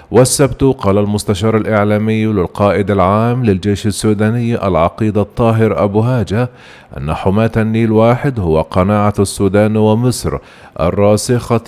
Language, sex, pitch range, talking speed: Arabic, male, 90-110 Hz, 110 wpm